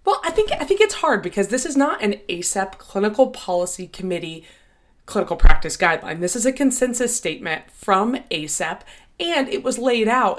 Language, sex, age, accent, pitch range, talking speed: Hebrew, female, 20-39, American, 175-245 Hz, 180 wpm